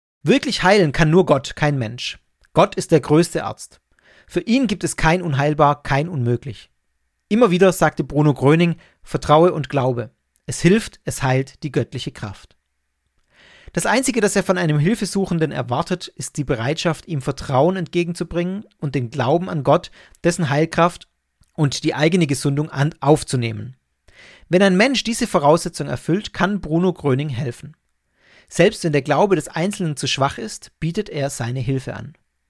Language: German